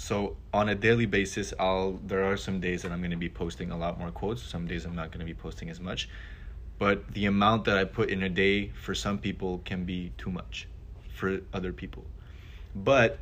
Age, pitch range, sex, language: 20-39, 90-105 Hz, male, English